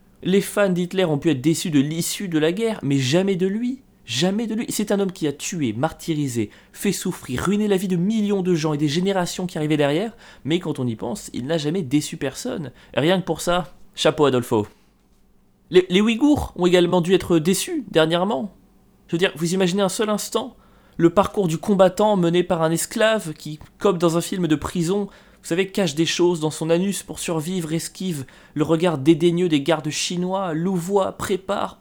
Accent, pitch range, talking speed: French, 155-195 Hz, 205 wpm